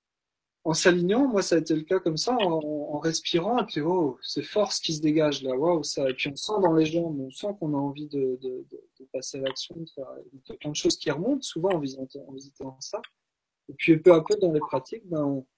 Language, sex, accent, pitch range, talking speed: French, male, French, 145-195 Hz, 250 wpm